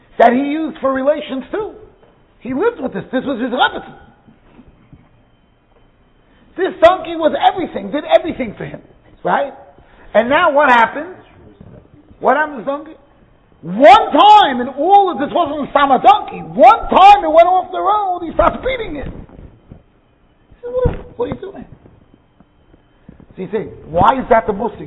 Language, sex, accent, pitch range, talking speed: English, male, American, 230-325 Hz, 160 wpm